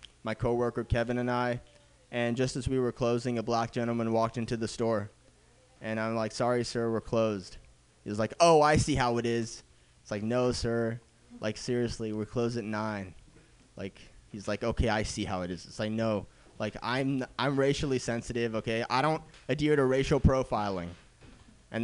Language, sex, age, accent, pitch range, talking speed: English, male, 20-39, American, 110-130 Hz, 190 wpm